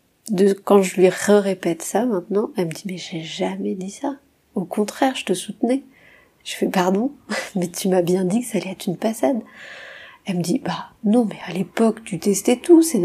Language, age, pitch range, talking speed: French, 40-59, 180-215 Hz, 235 wpm